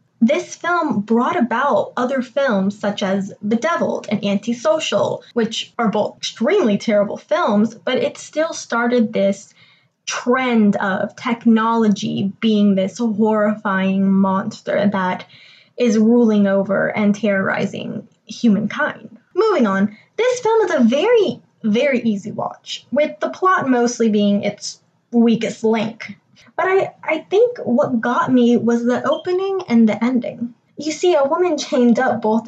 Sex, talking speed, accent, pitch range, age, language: female, 135 wpm, American, 205-270 Hz, 10-29, English